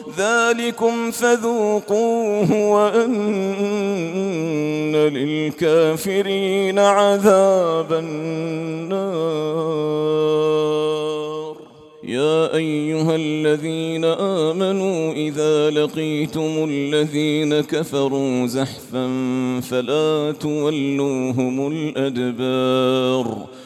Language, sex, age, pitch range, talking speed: English, male, 40-59, 145-160 Hz, 45 wpm